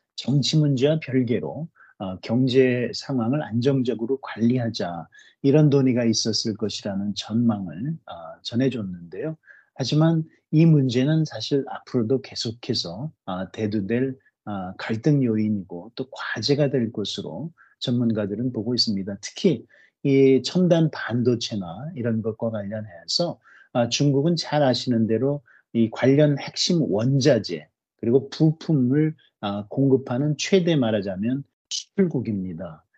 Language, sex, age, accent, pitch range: Korean, male, 30-49, native, 110-145 Hz